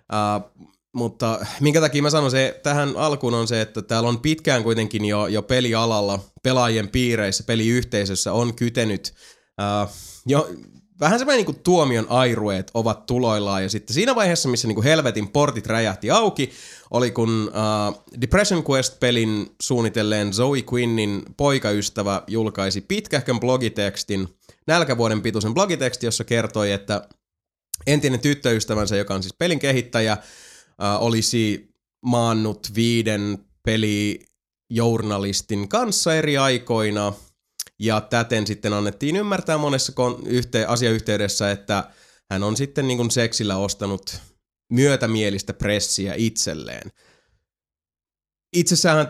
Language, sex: Finnish, male